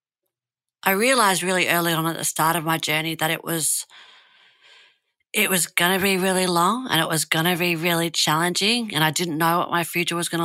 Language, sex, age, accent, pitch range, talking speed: English, female, 40-59, Australian, 155-180 Hz, 220 wpm